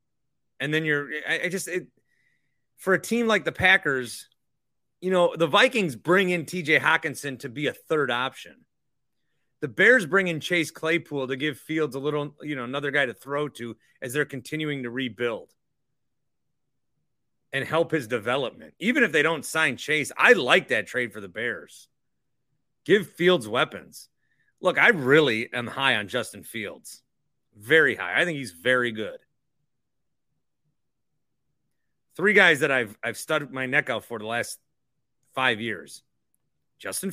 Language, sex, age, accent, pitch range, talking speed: English, male, 30-49, American, 125-160 Hz, 155 wpm